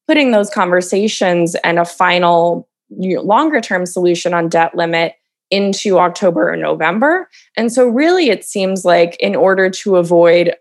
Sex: female